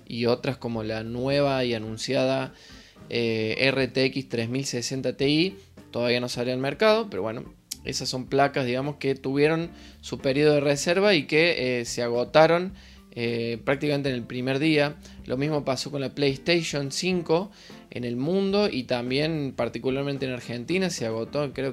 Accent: Argentinian